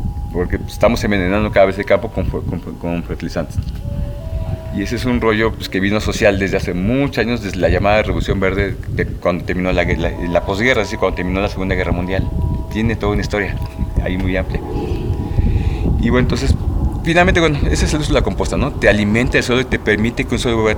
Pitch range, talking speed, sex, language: 95-120 Hz, 215 wpm, male, Spanish